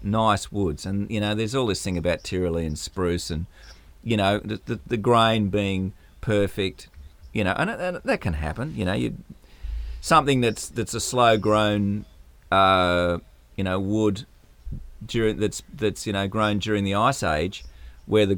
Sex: male